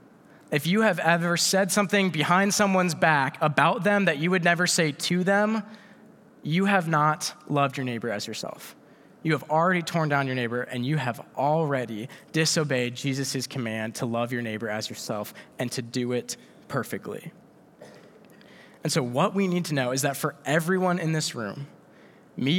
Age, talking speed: 20-39, 175 wpm